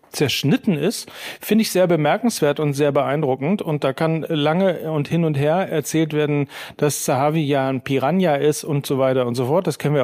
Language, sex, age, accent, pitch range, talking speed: German, male, 40-59, German, 130-150 Hz, 205 wpm